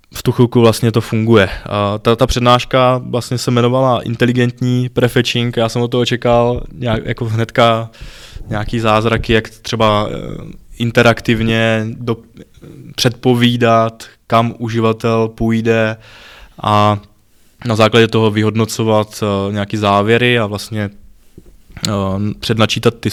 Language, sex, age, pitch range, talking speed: Czech, male, 20-39, 110-120 Hz, 110 wpm